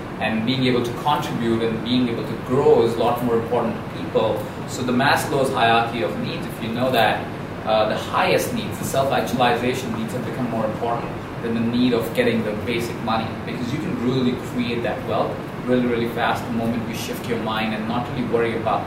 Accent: Indian